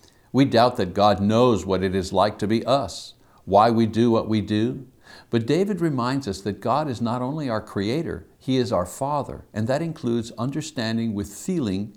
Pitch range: 100-130 Hz